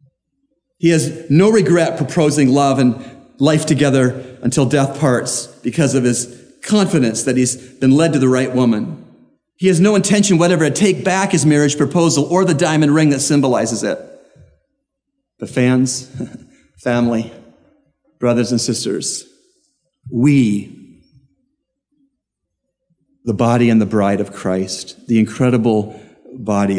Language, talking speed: English, 130 wpm